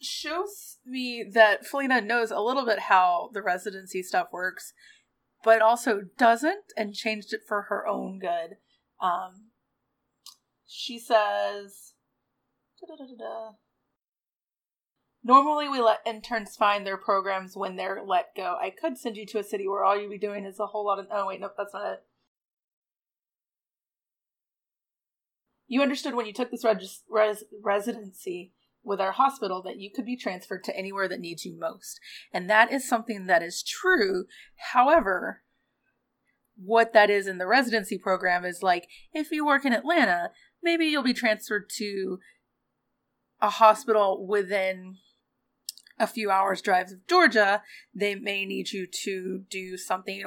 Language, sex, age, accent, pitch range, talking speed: English, female, 30-49, American, 195-245 Hz, 150 wpm